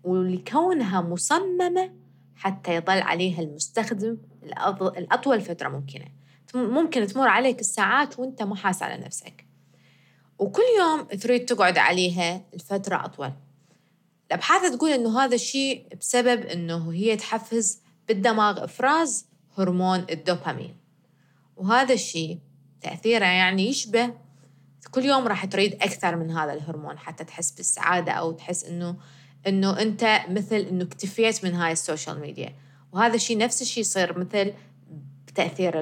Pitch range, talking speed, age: 165-230 Hz, 120 wpm, 20-39